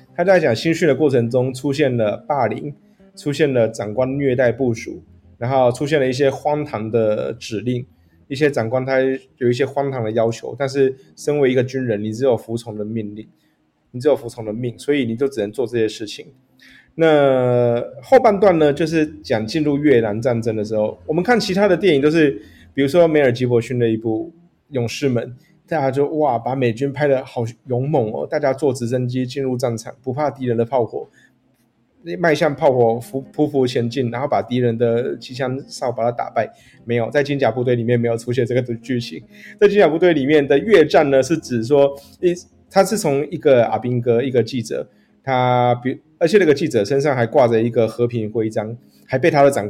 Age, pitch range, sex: 20-39, 115-145 Hz, male